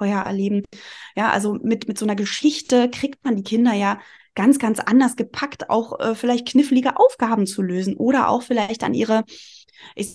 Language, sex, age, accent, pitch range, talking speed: German, female, 20-39, German, 205-250 Hz, 170 wpm